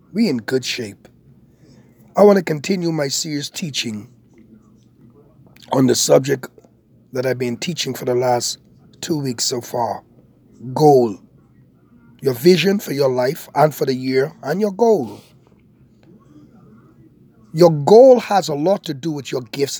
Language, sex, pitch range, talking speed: English, male, 130-170 Hz, 145 wpm